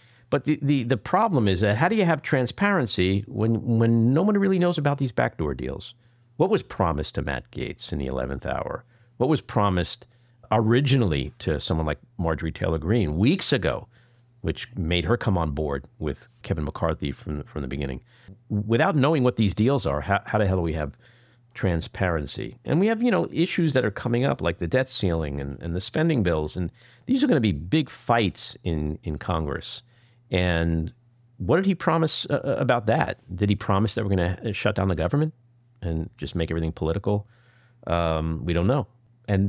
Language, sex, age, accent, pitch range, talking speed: English, male, 50-69, American, 85-125 Hz, 195 wpm